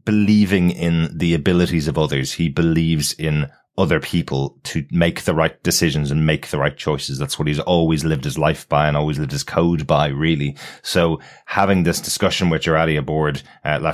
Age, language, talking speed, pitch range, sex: 30-49, English, 195 wpm, 80-90 Hz, male